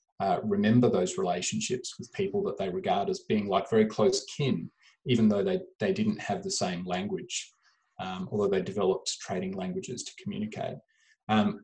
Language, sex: English, male